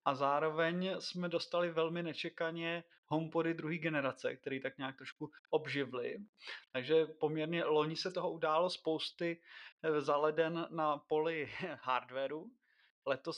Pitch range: 135-160 Hz